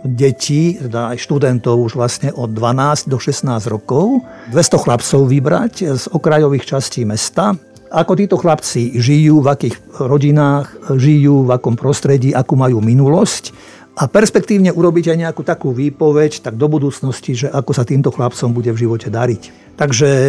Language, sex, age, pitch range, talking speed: Slovak, male, 50-69, 125-155 Hz, 155 wpm